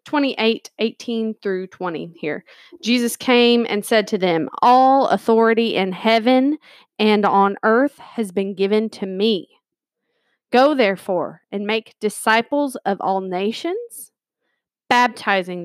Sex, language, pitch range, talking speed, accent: female, English, 210-275 Hz, 125 wpm, American